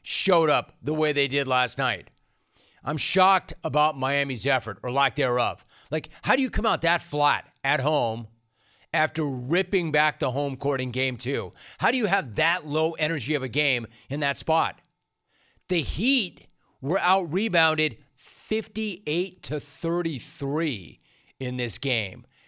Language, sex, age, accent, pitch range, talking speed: English, male, 40-59, American, 130-170 Hz, 150 wpm